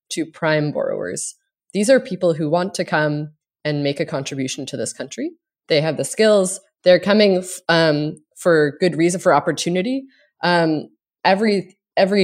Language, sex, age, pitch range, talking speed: English, female, 20-39, 150-190 Hz, 155 wpm